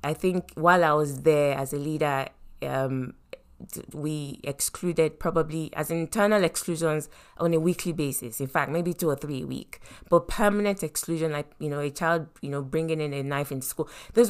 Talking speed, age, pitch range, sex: 190 wpm, 20-39, 155-200 Hz, female